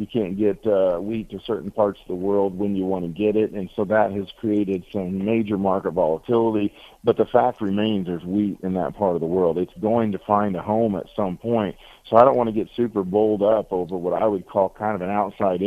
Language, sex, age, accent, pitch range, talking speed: English, male, 50-69, American, 95-110 Hz, 250 wpm